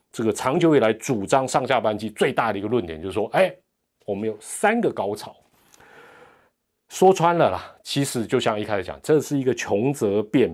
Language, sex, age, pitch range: Chinese, male, 30-49, 95-140 Hz